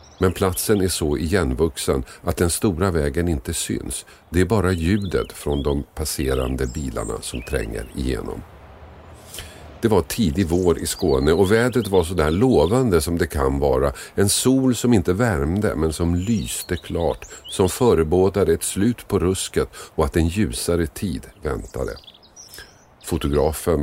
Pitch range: 80-105 Hz